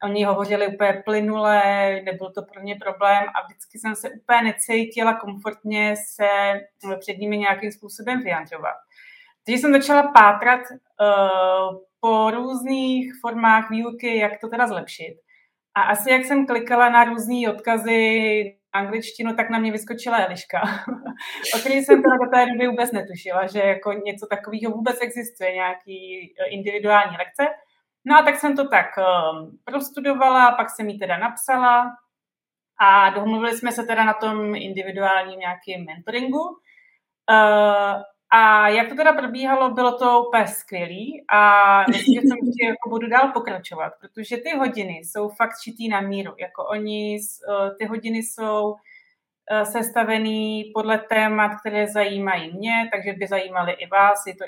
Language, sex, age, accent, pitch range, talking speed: Czech, female, 30-49, native, 200-245 Hz, 145 wpm